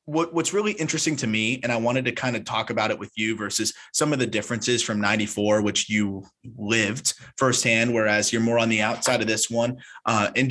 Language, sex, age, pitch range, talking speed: English, male, 20-39, 105-125 Hz, 215 wpm